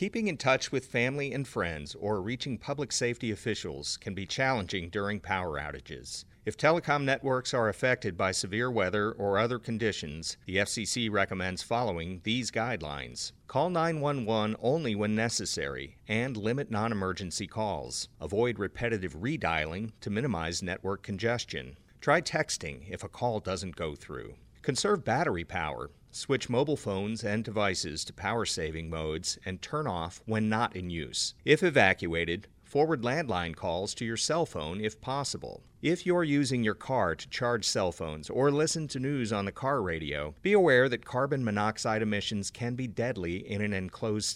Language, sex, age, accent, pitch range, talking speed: English, male, 40-59, American, 95-120 Hz, 160 wpm